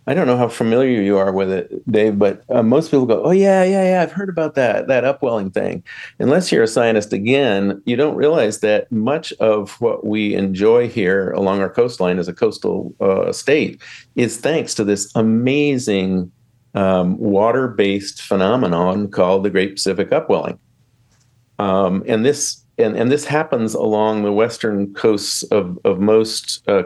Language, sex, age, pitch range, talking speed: English, male, 50-69, 100-125 Hz, 170 wpm